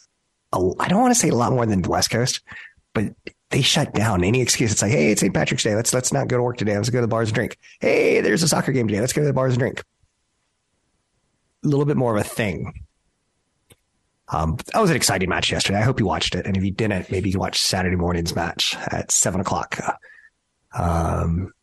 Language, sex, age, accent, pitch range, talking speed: English, male, 30-49, American, 95-115 Hz, 235 wpm